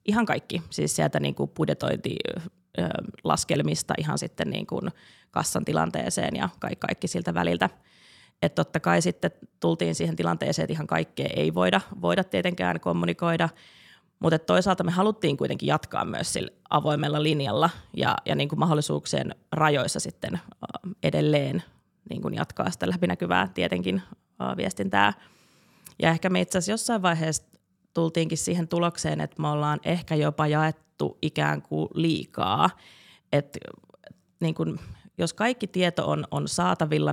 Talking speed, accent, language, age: 135 wpm, native, Finnish, 30-49